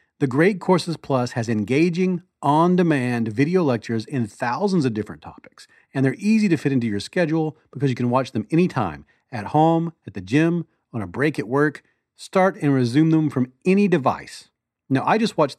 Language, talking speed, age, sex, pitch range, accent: English, 190 wpm, 40-59, male, 120-160 Hz, American